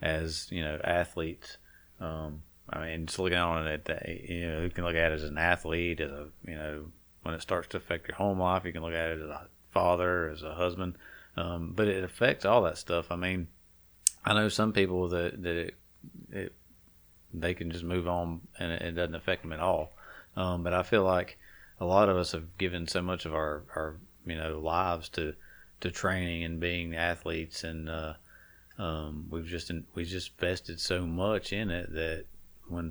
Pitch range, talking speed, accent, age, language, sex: 80-90 Hz, 210 wpm, American, 40-59, English, male